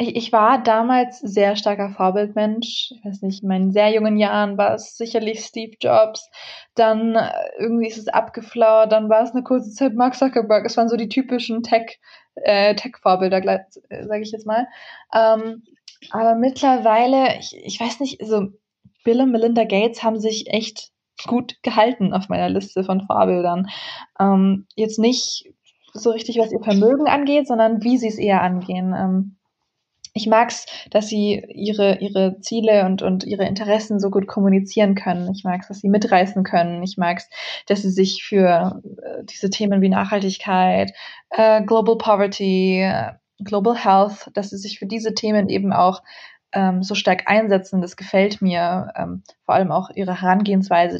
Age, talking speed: 20-39, 170 wpm